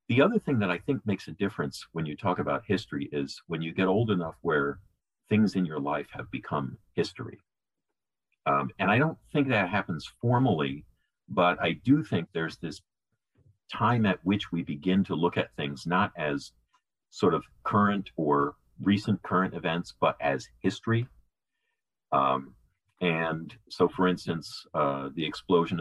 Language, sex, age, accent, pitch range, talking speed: English, male, 50-69, American, 75-105 Hz, 165 wpm